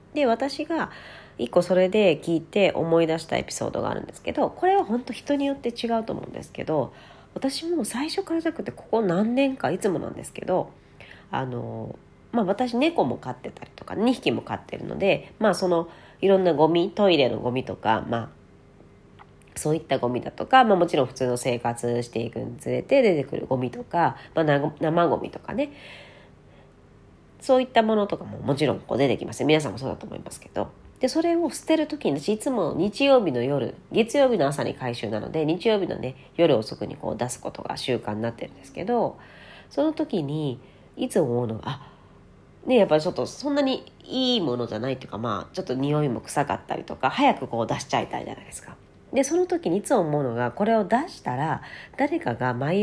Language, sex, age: Japanese, female, 40-59